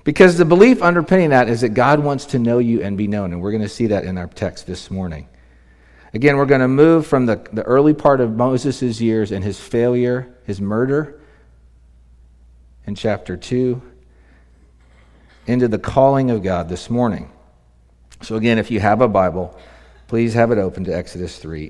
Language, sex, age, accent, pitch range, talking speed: English, male, 50-69, American, 95-135 Hz, 190 wpm